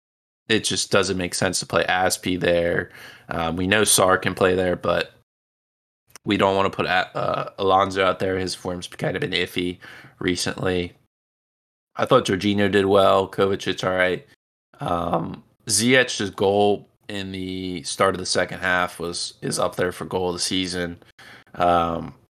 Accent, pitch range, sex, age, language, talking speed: American, 90-100 Hz, male, 20-39, English, 165 wpm